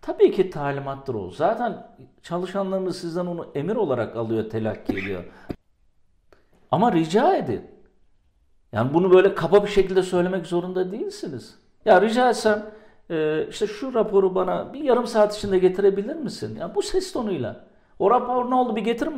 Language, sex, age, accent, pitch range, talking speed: Turkish, male, 50-69, native, 160-225 Hz, 155 wpm